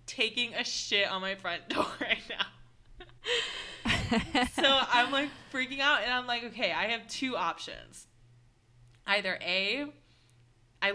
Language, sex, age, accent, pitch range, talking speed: English, female, 20-39, American, 165-200 Hz, 135 wpm